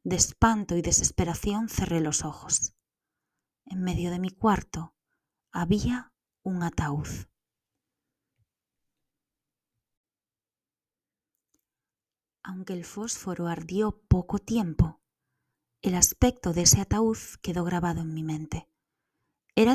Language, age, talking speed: Spanish, 20-39, 95 wpm